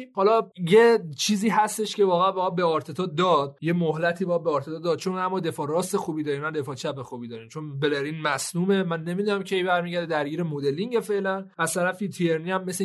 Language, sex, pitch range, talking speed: Persian, male, 165-205 Hz, 185 wpm